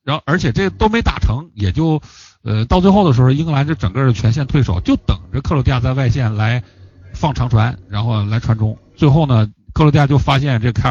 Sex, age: male, 50-69